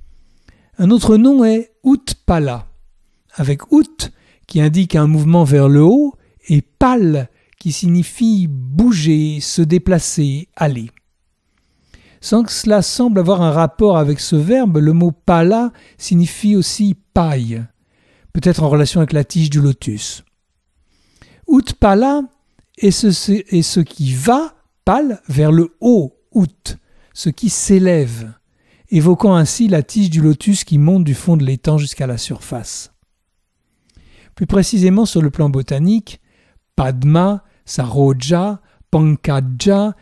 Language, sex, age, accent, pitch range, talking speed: French, male, 60-79, French, 135-200 Hz, 145 wpm